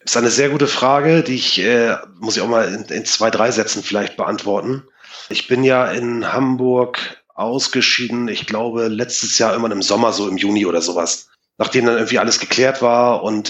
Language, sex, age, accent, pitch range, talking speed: German, male, 30-49, German, 110-125 Hz, 200 wpm